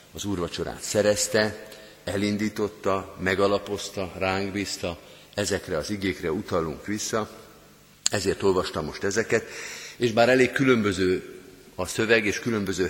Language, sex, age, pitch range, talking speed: Hungarian, male, 50-69, 90-105 Hz, 110 wpm